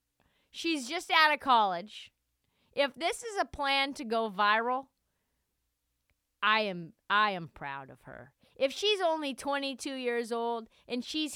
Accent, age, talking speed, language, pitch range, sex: American, 40-59, 150 wpm, English, 170-260 Hz, female